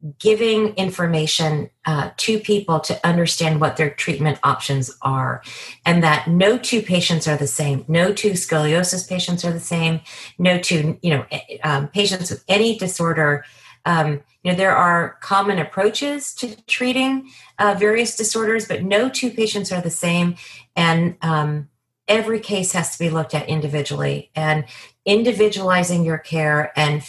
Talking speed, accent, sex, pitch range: 155 wpm, American, female, 155-200 Hz